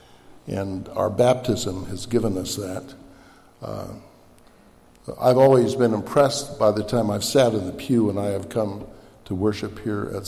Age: 60-79